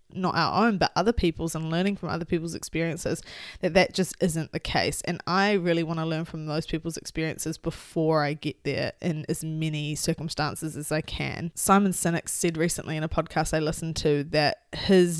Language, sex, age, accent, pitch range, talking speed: English, female, 20-39, Australian, 155-180 Hz, 200 wpm